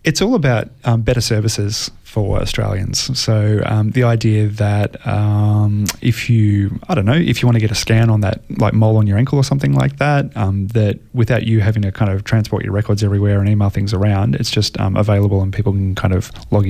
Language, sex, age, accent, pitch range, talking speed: English, male, 20-39, Australian, 100-115 Hz, 225 wpm